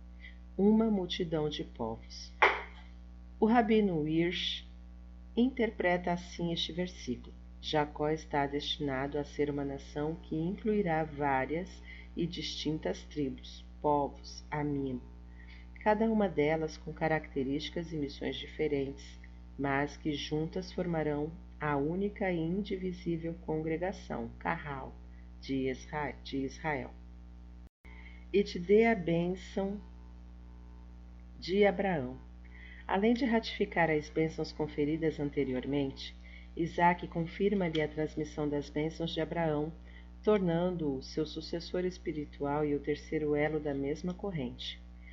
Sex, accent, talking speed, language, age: female, Brazilian, 105 wpm, Portuguese, 40-59